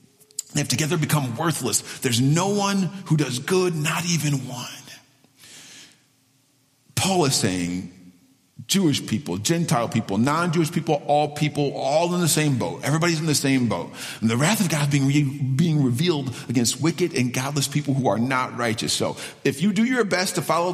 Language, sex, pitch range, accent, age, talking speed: English, male, 130-170 Hz, American, 40-59, 170 wpm